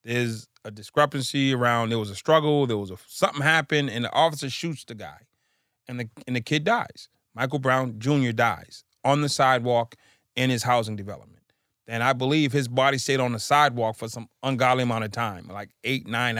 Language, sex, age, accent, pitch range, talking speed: English, male, 30-49, American, 115-140 Hz, 200 wpm